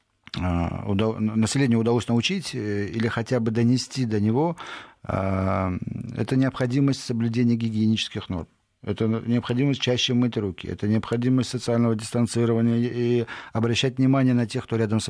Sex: male